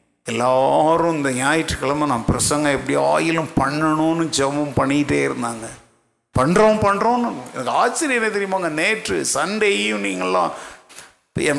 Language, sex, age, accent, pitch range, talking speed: Tamil, male, 50-69, native, 155-230 Hz, 105 wpm